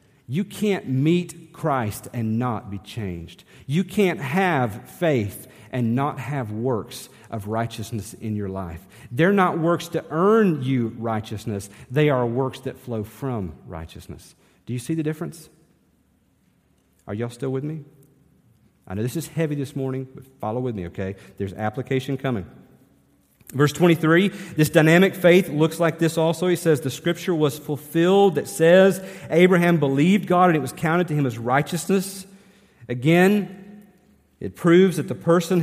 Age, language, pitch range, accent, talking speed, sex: 40-59, English, 120-170 Hz, American, 160 wpm, male